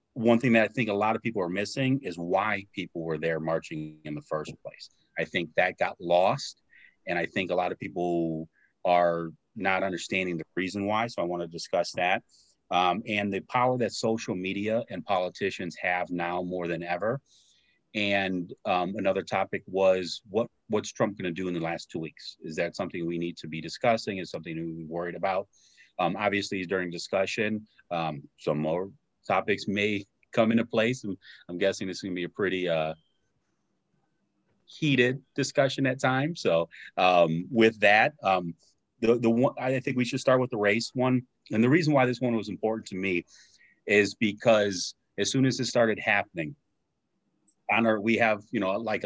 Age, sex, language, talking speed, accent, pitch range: 30-49, male, English, 190 wpm, American, 90-120 Hz